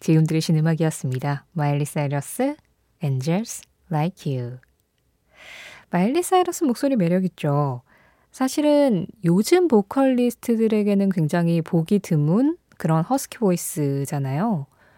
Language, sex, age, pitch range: Korean, female, 20-39, 155-235 Hz